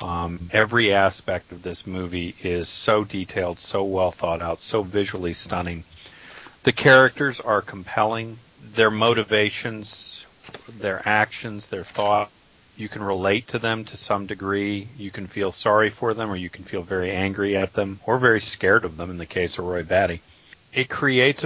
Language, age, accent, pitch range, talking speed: English, 40-59, American, 95-110 Hz, 170 wpm